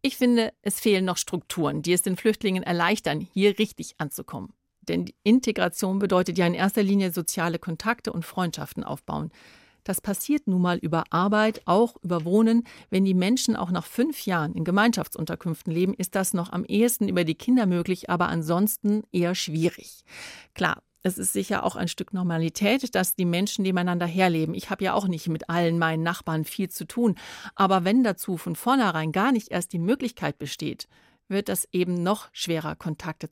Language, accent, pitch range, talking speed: German, German, 170-210 Hz, 180 wpm